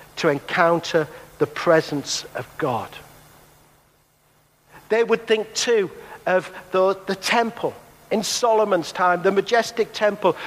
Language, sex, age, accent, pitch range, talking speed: English, male, 50-69, British, 180-225 Hz, 115 wpm